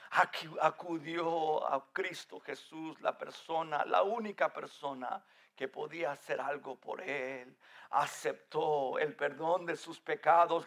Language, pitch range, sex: English, 160-235 Hz, male